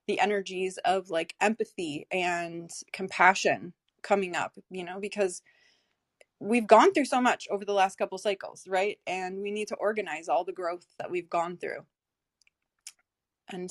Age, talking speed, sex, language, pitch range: 20-39, 160 wpm, female, English, 185-215 Hz